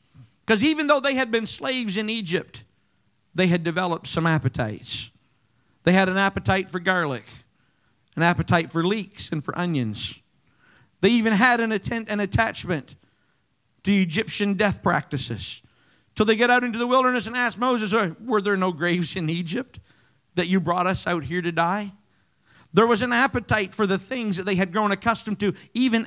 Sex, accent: male, American